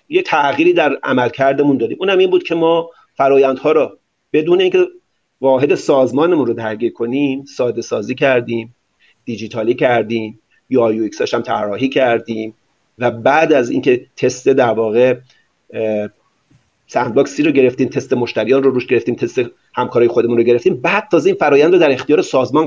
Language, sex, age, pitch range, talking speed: Persian, male, 40-59, 125-205 Hz, 155 wpm